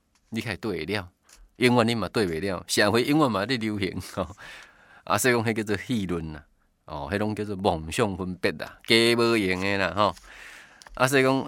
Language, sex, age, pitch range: Chinese, male, 20-39, 95-125 Hz